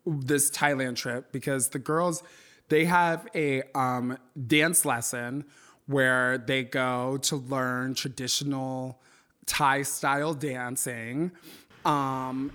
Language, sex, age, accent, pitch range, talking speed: English, male, 20-39, American, 125-145 Hz, 105 wpm